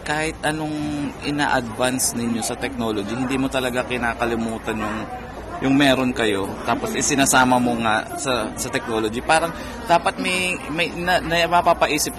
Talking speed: 140 wpm